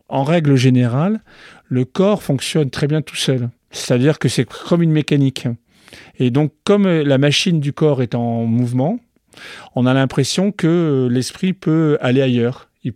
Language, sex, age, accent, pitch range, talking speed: French, male, 40-59, French, 125-150 Hz, 160 wpm